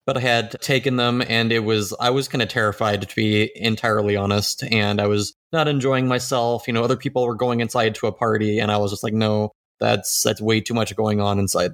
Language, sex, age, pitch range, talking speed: English, male, 20-39, 110-130 Hz, 240 wpm